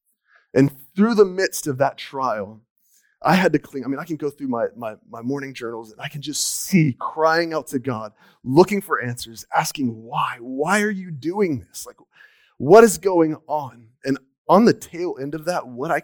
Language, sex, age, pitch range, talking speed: English, male, 30-49, 130-175 Hz, 205 wpm